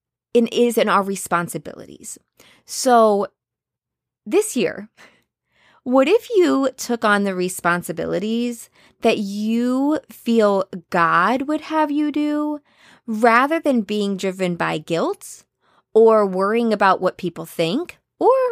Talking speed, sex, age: 115 wpm, female, 20-39